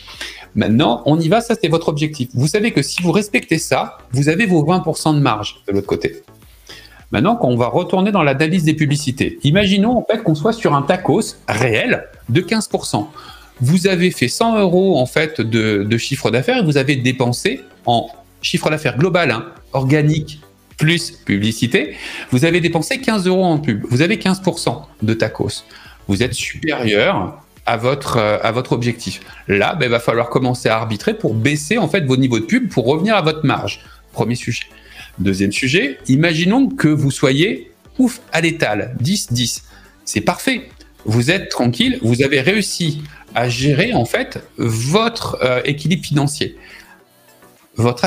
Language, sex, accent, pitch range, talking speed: French, male, French, 125-180 Hz, 165 wpm